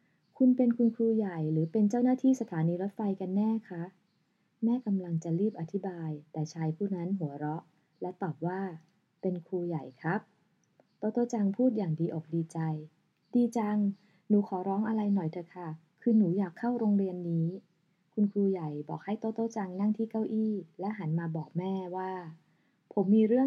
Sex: female